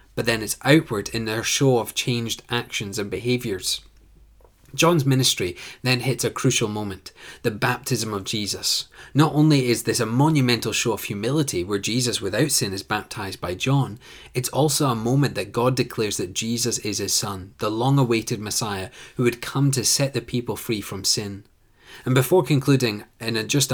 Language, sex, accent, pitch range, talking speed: English, male, British, 105-130 Hz, 175 wpm